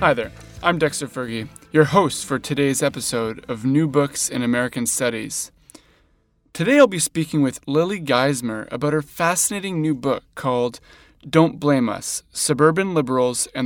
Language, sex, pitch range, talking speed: English, male, 125-155 Hz, 155 wpm